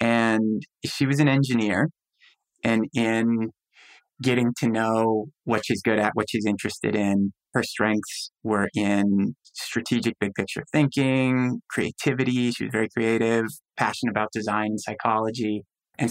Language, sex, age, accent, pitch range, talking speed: English, male, 30-49, American, 105-120 Hz, 140 wpm